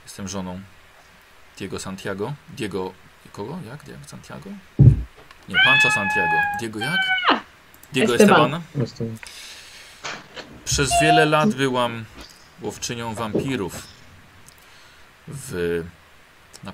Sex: male